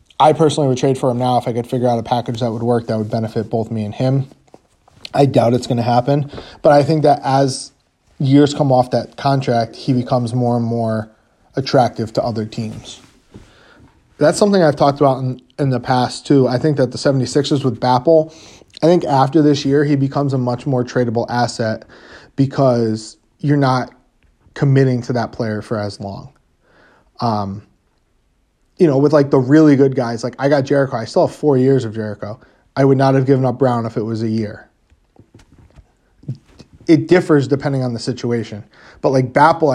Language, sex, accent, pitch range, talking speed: English, male, American, 115-140 Hz, 195 wpm